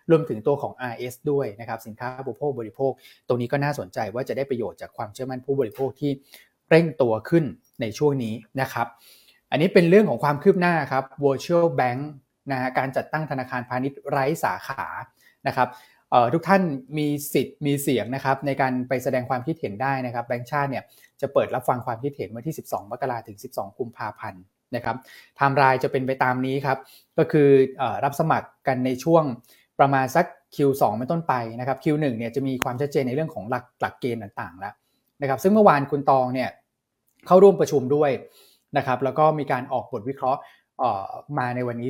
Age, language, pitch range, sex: 20-39, Thai, 125-150 Hz, male